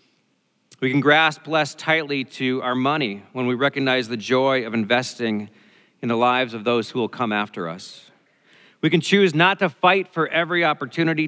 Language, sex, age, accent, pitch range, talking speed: English, male, 40-59, American, 110-145 Hz, 180 wpm